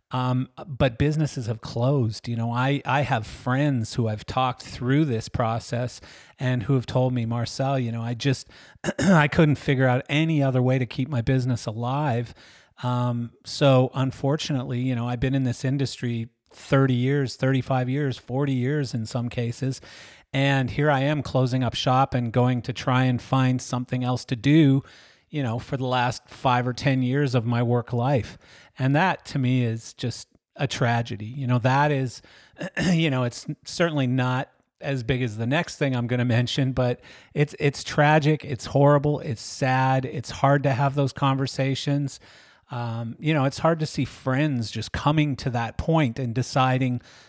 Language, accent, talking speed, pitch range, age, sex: English, American, 185 wpm, 120-140 Hz, 40-59, male